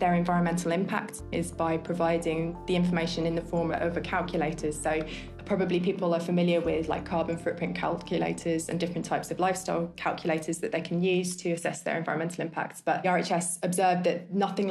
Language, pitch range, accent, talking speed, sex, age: English, 165-180 Hz, British, 185 wpm, female, 20-39